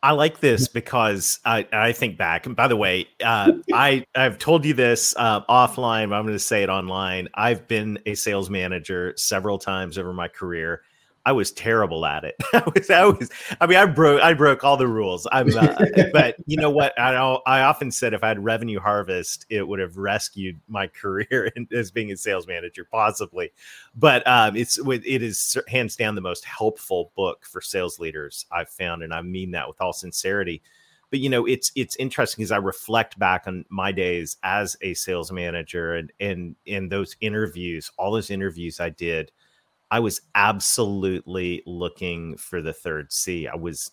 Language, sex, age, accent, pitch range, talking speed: English, male, 40-59, American, 90-120 Hz, 195 wpm